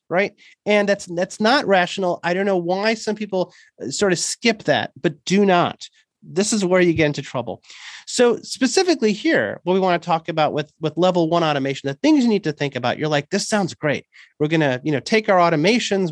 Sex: male